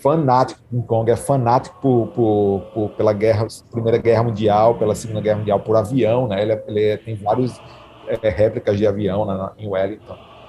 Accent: Brazilian